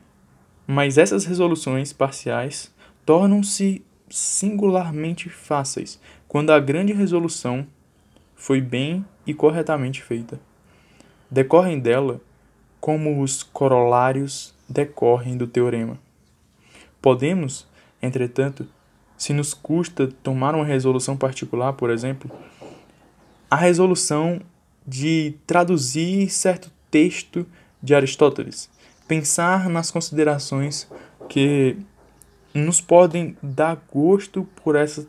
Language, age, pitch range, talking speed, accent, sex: Portuguese, 10-29, 135-170 Hz, 90 wpm, Brazilian, male